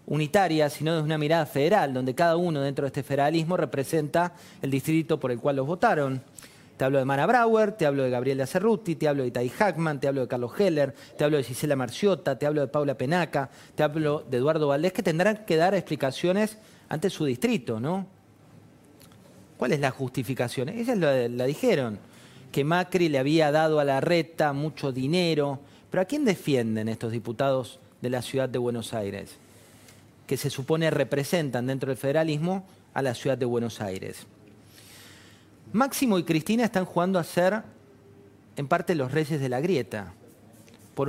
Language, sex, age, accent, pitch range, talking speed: Spanish, male, 40-59, Argentinian, 130-175 Hz, 180 wpm